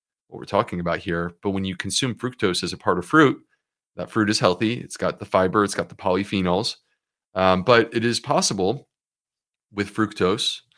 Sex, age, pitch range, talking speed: male, 30-49, 90-110 Hz, 190 wpm